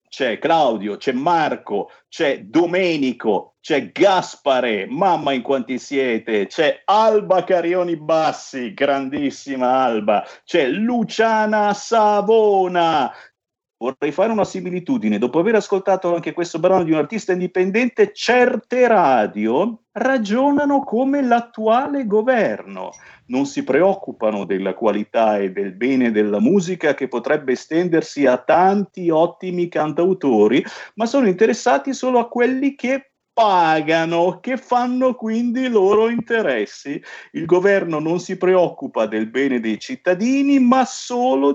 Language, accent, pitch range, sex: Italian, native, 140-235 Hz, male